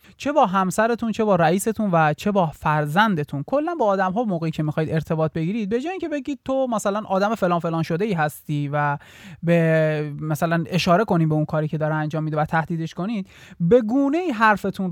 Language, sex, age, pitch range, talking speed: Persian, male, 30-49, 155-205 Hz, 200 wpm